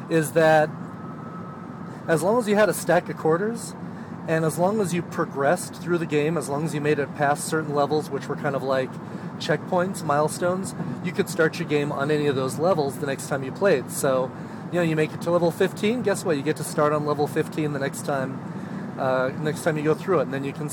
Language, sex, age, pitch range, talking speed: English, male, 30-49, 145-180 Hz, 240 wpm